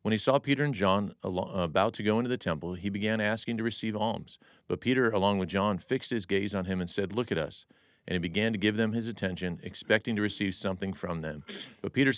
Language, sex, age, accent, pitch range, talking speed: English, male, 40-59, American, 90-115 Hz, 240 wpm